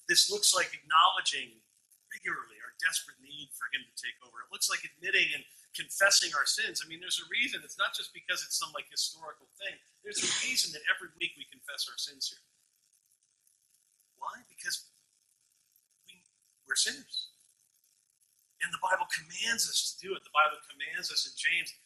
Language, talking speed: English, 180 wpm